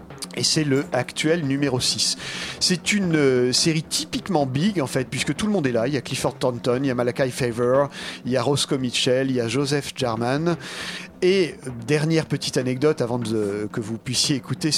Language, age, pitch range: French, 40-59, 125-170 Hz